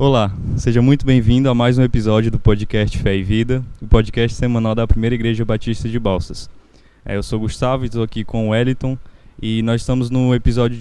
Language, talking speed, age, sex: Portuguese, 205 wpm, 10-29, male